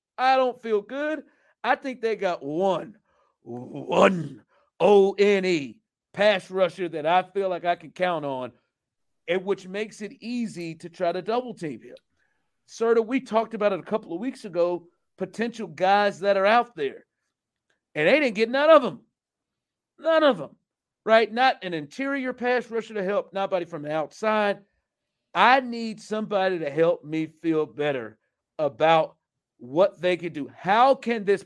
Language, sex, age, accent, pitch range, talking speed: English, male, 40-59, American, 190-265 Hz, 165 wpm